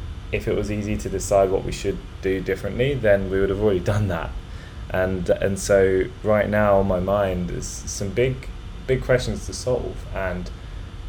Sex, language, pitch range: male, English, 90-105 Hz